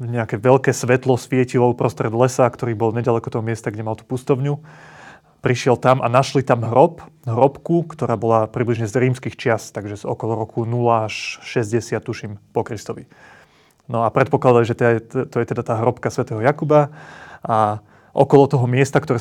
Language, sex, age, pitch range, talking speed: Slovak, male, 30-49, 115-140 Hz, 170 wpm